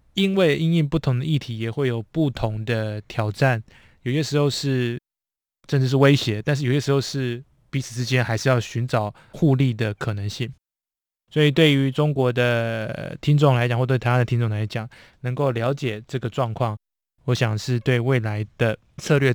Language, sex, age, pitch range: Chinese, male, 20-39, 115-140 Hz